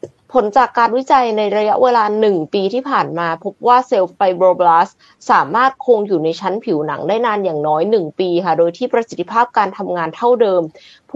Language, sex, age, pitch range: Thai, female, 20-39, 185-250 Hz